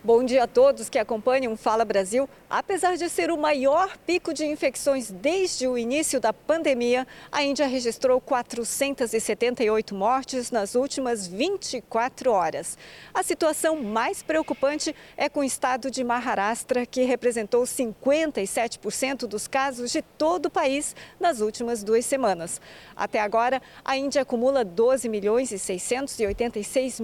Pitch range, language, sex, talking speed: 230-295 Hz, Portuguese, female, 140 wpm